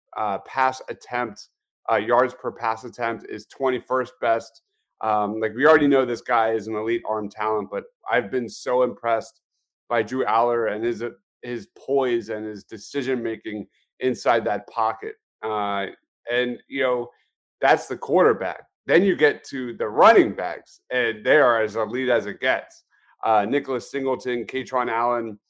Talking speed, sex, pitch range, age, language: 165 wpm, male, 110-130 Hz, 30-49, English